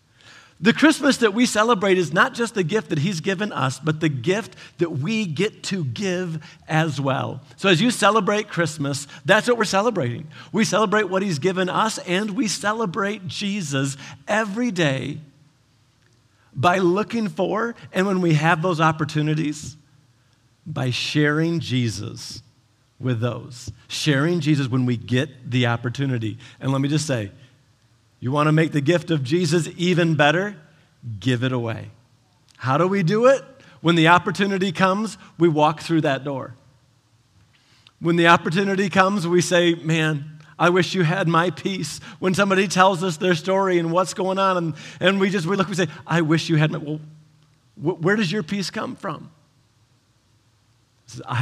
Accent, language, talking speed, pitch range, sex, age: American, English, 170 wpm, 130-190 Hz, male, 50-69